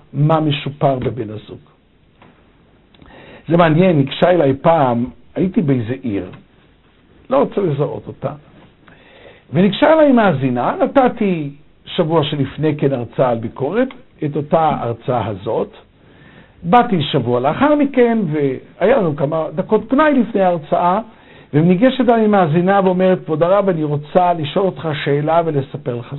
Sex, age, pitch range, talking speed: male, 60-79, 140-210 Hz, 125 wpm